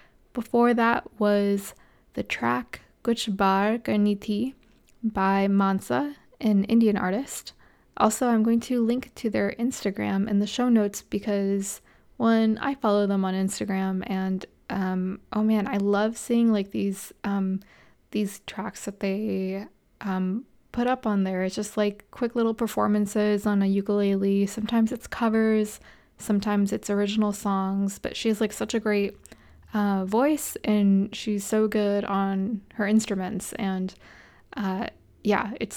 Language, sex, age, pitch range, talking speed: English, female, 20-39, 200-230 Hz, 145 wpm